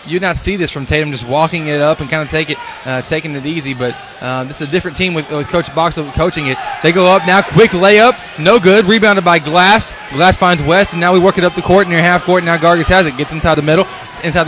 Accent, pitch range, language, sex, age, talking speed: American, 170-220 Hz, English, male, 20-39, 280 wpm